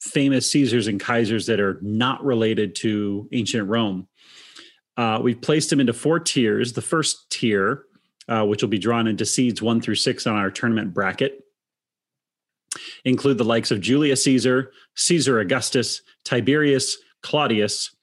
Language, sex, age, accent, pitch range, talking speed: English, male, 30-49, American, 110-135 Hz, 150 wpm